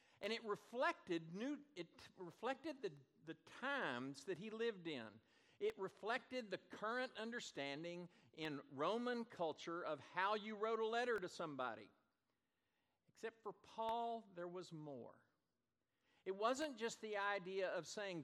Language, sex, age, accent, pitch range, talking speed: English, male, 50-69, American, 160-225 Hz, 140 wpm